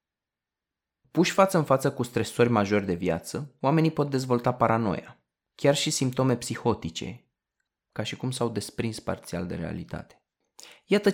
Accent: native